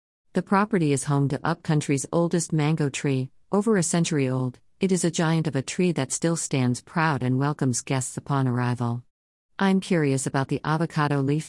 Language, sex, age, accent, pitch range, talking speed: English, female, 50-69, American, 130-160 Hz, 185 wpm